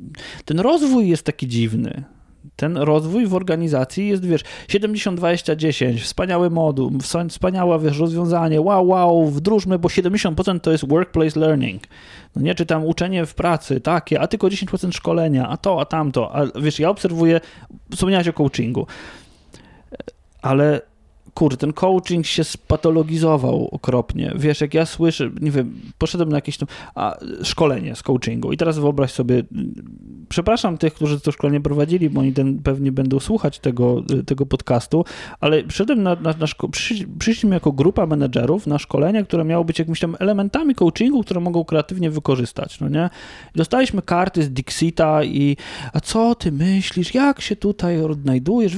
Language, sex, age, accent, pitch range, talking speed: Polish, male, 20-39, native, 145-195 Hz, 155 wpm